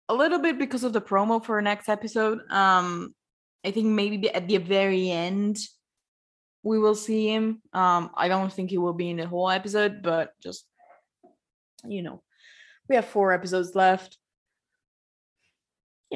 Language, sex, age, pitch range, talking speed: English, female, 20-39, 175-210 Hz, 165 wpm